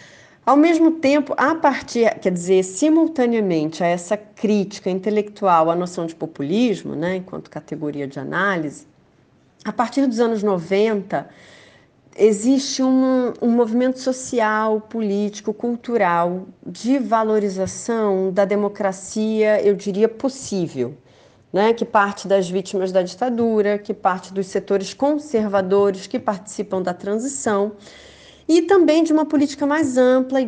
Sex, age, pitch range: female, 40-59, 185-245 Hz